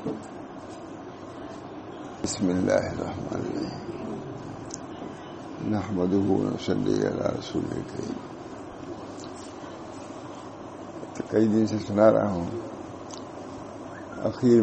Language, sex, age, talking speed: English, male, 60-79, 55 wpm